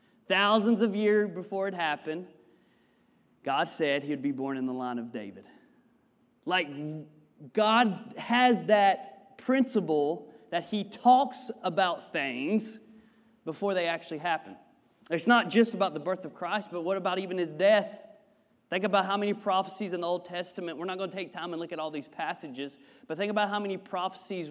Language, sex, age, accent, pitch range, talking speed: English, male, 30-49, American, 165-220 Hz, 175 wpm